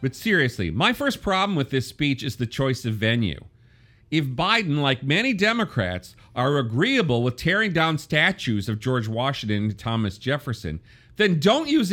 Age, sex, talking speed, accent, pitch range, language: 40-59, male, 165 wpm, American, 115-165 Hz, English